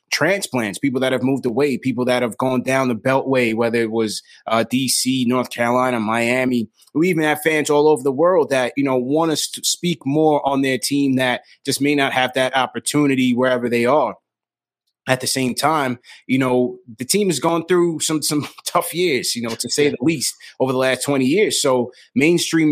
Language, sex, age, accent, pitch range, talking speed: English, male, 20-39, American, 125-145 Hz, 205 wpm